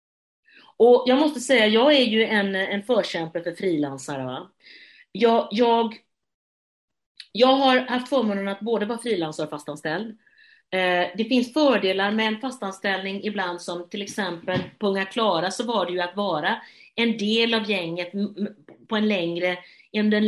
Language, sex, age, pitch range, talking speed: Swedish, female, 40-59, 170-220 Hz, 155 wpm